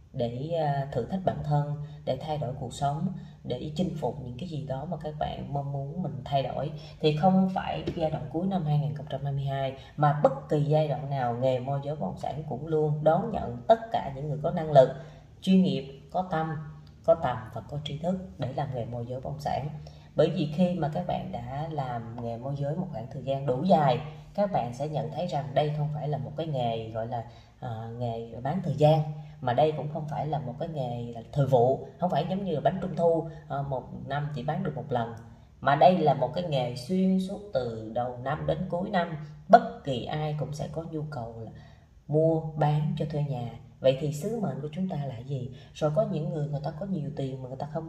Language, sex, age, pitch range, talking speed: Vietnamese, female, 20-39, 135-165 Hz, 235 wpm